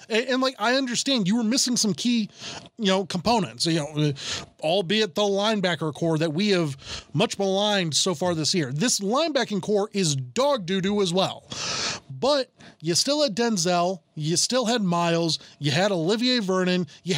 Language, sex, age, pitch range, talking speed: English, male, 20-39, 160-240 Hz, 175 wpm